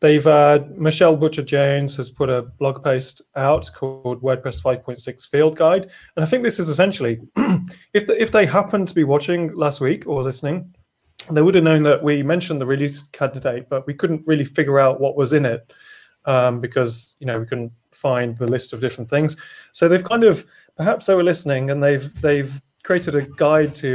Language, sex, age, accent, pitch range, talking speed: English, male, 30-49, British, 130-155 Hz, 200 wpm